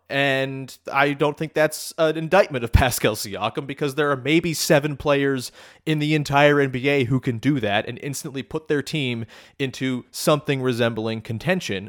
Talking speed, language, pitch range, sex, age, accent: 165 wpm, English, 120-160 Hz, male, 30-49, American